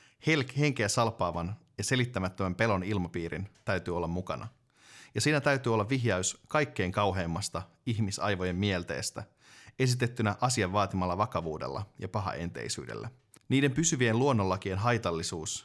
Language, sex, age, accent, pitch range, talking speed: Finnish, male, 30-49, native, 90-115 Hz, 105 wpm